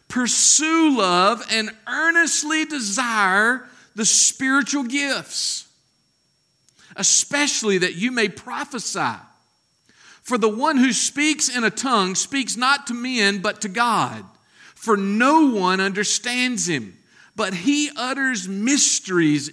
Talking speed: 115 wpm